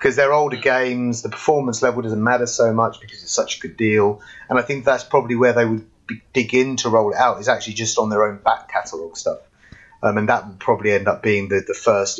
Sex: male